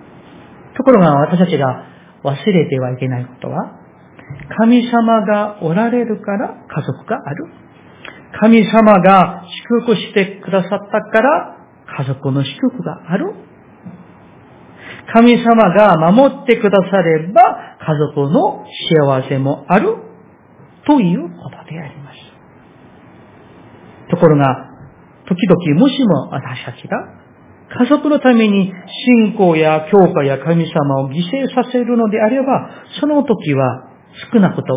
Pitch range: 140-225 Hz